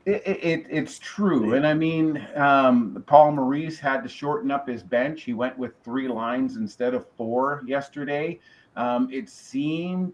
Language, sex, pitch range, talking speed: English, male, 125-190 Hz, 165 wpm